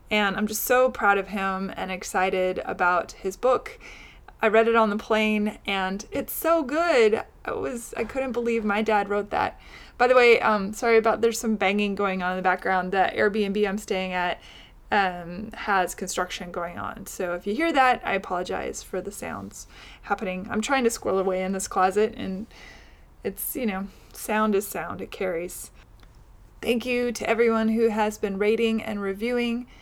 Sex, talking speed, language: female, 185 wpm, English